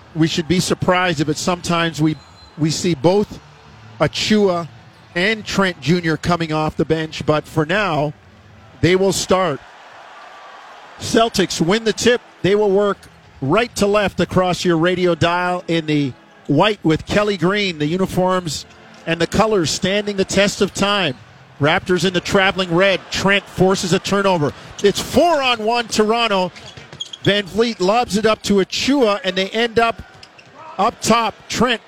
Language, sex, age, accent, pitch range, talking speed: English, male, 50-69, American, 170-205 Hz, 155 wpm